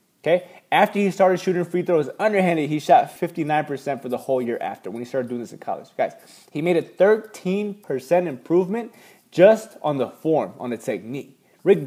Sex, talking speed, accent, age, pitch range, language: male, 185 wpm, American, 20-39, 130-175 Hz, English